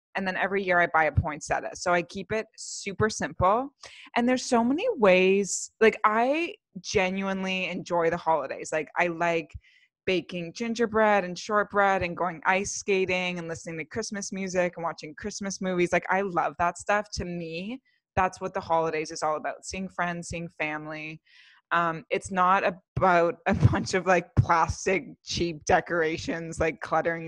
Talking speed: 165 wpm